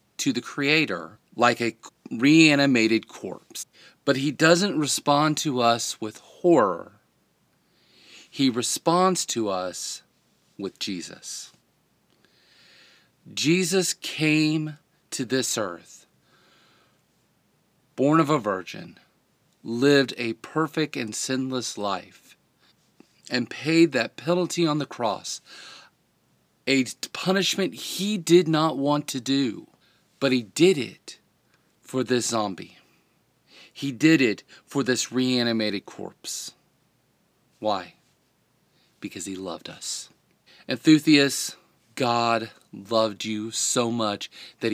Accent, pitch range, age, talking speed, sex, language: American, 110-150 Hz, 40-59, 105 wpm, male, English